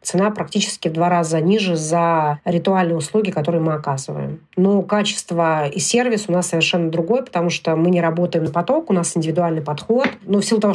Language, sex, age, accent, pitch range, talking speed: Russian, female, 30-49, native, 170-205 Hz, 195 wpm